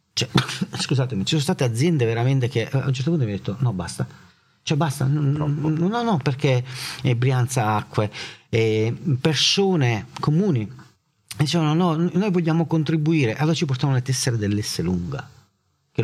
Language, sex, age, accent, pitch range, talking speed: Italian, male, 40-59, native, 95-130 Hz, 160 wpm